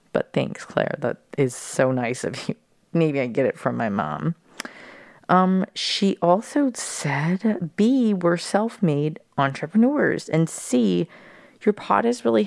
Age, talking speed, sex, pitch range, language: 30-49, 145 wpm, female, 130-165 Hz, English